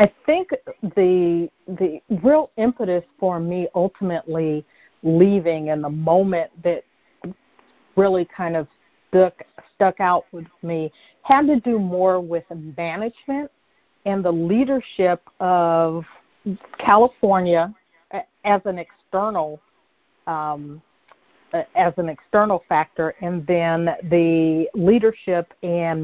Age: 50-69